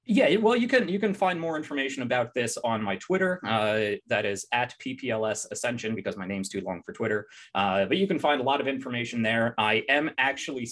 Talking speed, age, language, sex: 225 wpm, 20-39, English, male